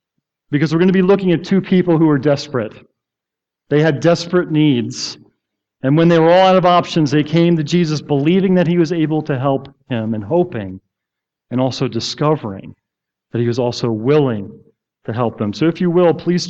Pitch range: 135-165 Hz